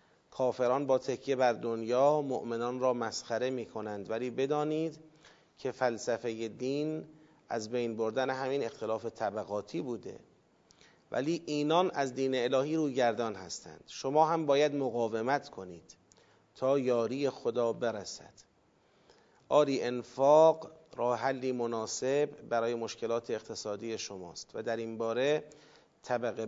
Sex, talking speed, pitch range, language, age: male, 120 wpm, 120-150 Hz, Persian, 40-59